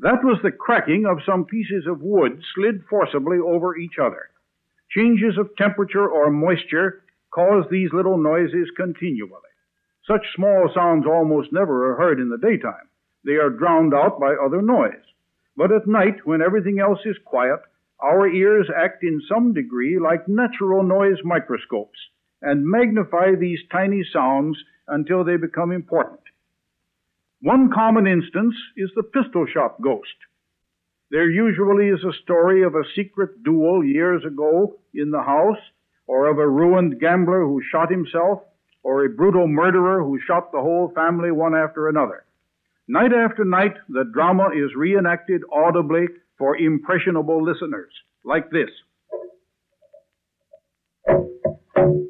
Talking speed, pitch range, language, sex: 140 wpm, 160-200 Hz, English, male